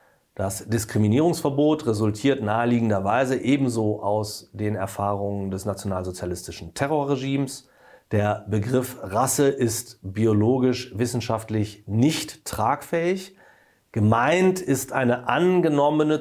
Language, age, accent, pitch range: German, 40-59, German, 110-140 Hz